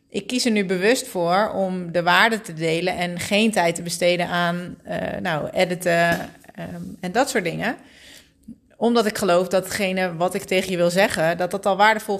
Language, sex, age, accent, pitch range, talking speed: Dutch, female, 30-49, Dutch, 180-225 Hz, 195 wpm